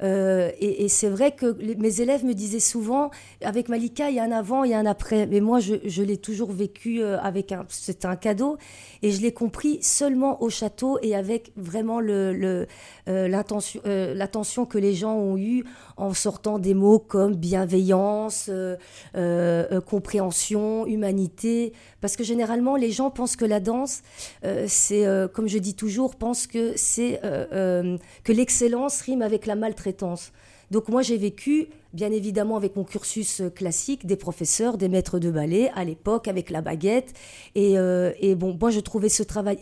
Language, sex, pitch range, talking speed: French, female, 195-235 Hz, 185 wpm